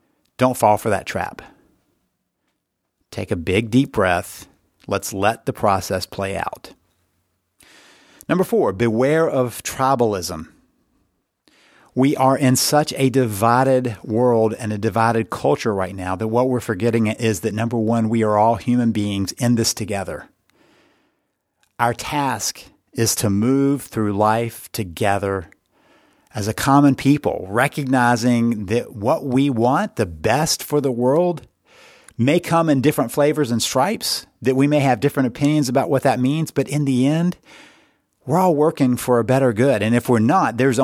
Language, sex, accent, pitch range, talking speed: English, male, American, 110-140 Hz, 155 wpm